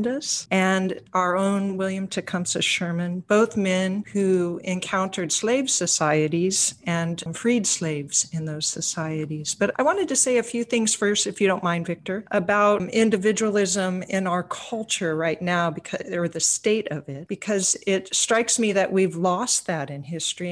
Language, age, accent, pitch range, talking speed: English, 50-69, American, 170-200 Hz, 160 wpm